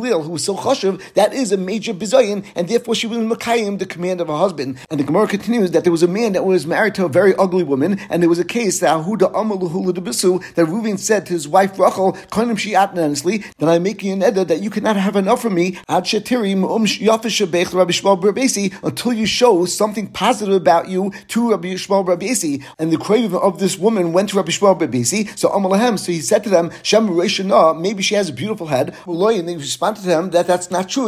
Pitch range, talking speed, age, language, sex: 175-215 Hz, 205 wpm, 50-69, English, male